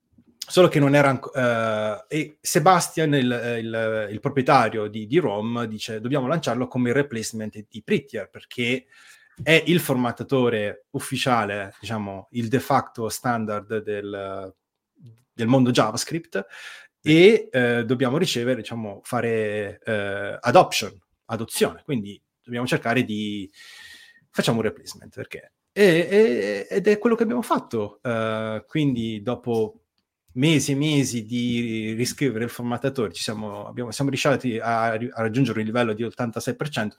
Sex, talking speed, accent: male, 135 wpm, native